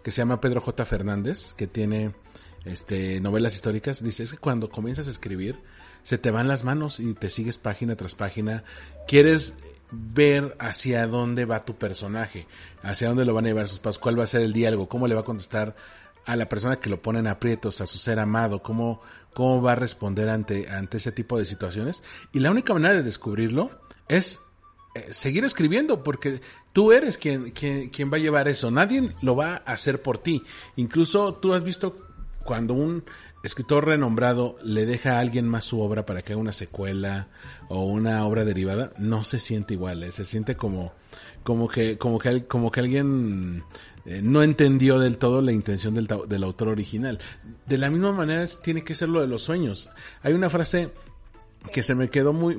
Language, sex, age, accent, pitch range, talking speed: Spanish, male, 40-59, Mexican, 105-140 Hz, 195 wpm